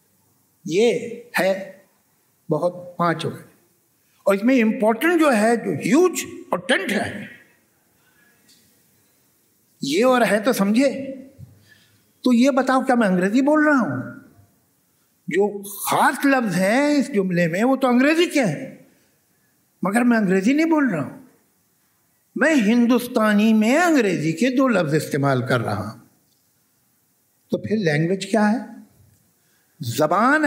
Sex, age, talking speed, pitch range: male, 60-79, 130 wpm, 195-270 Hz